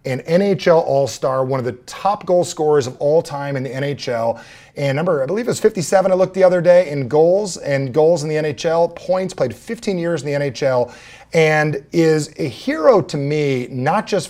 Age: 30-49